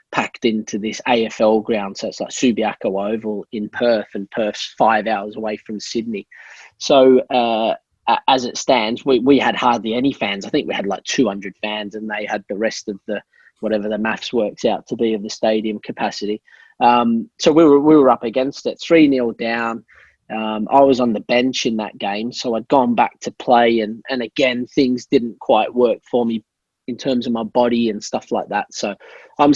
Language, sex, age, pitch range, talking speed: English, male, 20-39, 110-155 Hz, 205 wpm